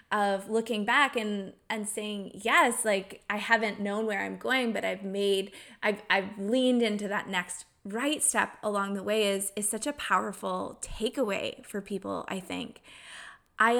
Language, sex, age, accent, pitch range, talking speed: English, female, 20-39, American, 205-240 Hz, 170 wpm